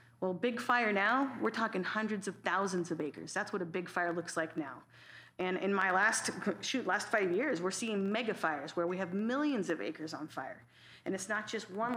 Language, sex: English, female